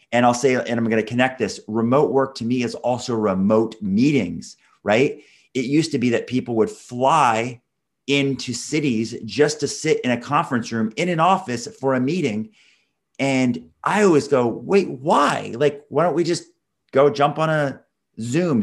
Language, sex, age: English, male, 30-49